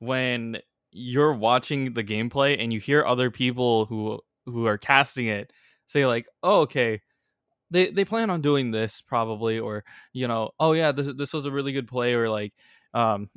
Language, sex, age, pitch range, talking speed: English, male, 20-39, 110-140 Hz, 185 wpm